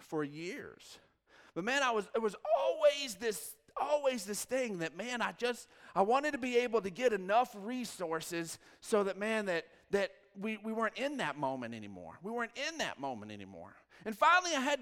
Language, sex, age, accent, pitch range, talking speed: English, male, 40-59, American, 205-280 Hz, 195 wpm